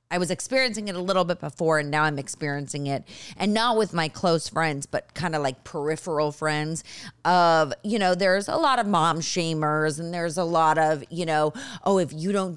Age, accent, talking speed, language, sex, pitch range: 30-49, American, 215 wpm, English, female, 145-185 Hz